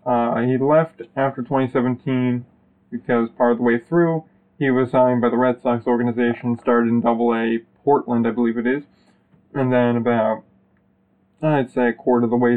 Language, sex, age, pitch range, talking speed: English, male, 20-39, 120-130 Hz, 175 wpm